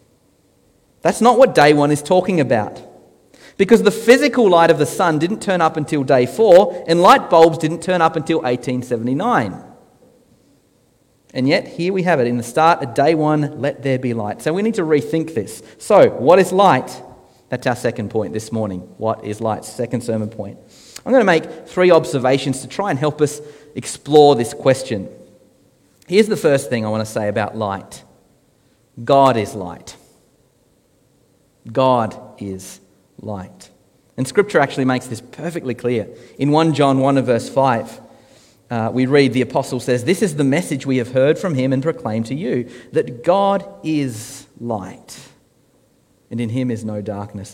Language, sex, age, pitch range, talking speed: English, male, 40-59, 120-165 Hz, 175 wpm